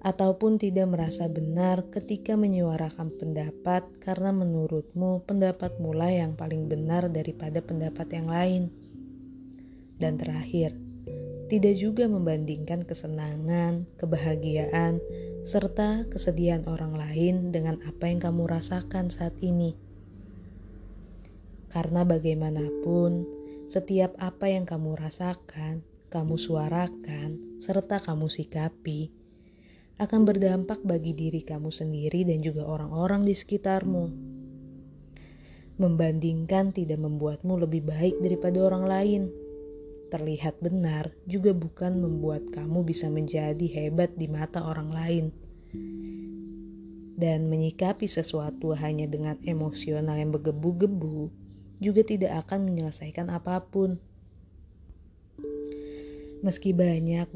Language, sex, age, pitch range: Indonesian, female, 20-39, 150-180 Hz